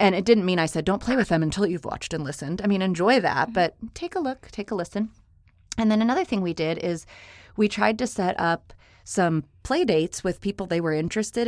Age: 30-49